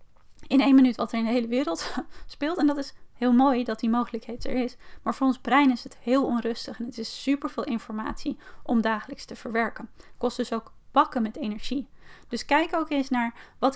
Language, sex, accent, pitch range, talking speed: Dutch, female, Dutch, 230-275 Hz, 220 wpm